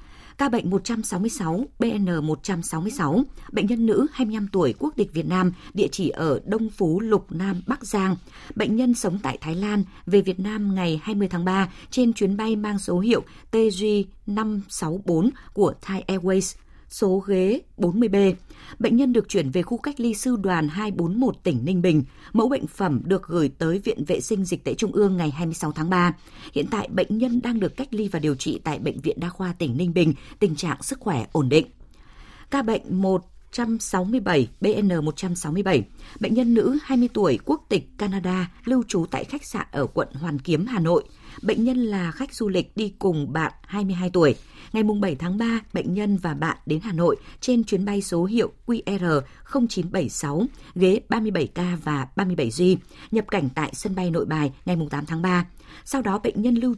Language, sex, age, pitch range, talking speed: Vietnamese, female, 20-39, 170-220 Hz, 190 wpm